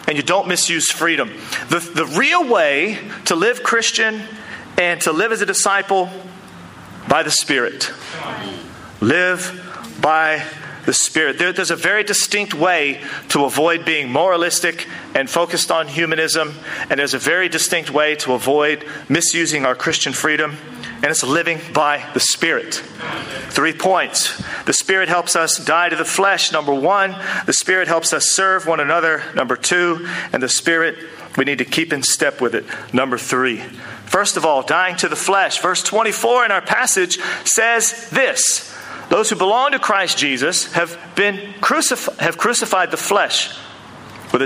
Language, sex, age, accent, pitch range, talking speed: English, male, 40-59, American, 155-195 Hz, 160 wpm